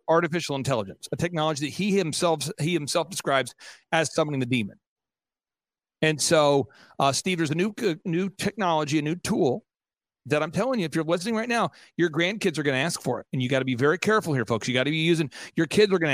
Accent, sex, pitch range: American, male, 140-180 Hz